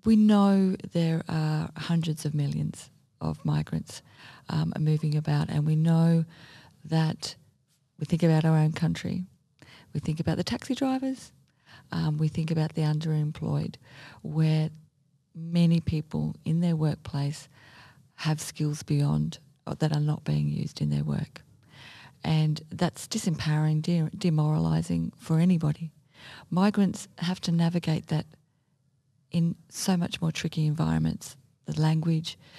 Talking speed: 135 wpm